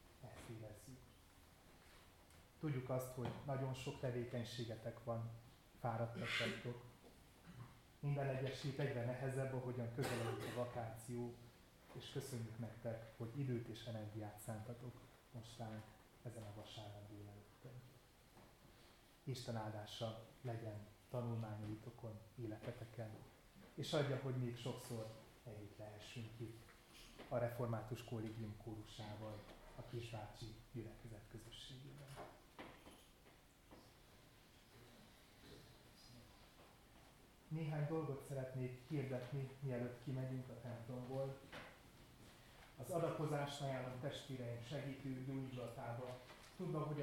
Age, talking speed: 30-49, 85 wpm